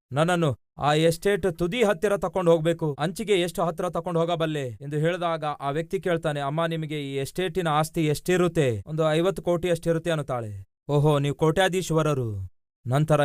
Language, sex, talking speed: Kannada, male, 145 wpm